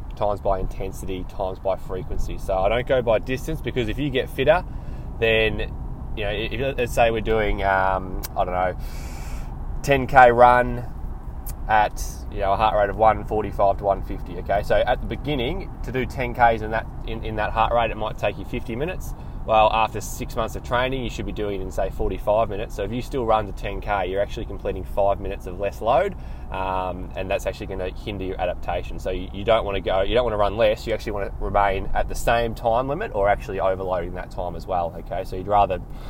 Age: 20-39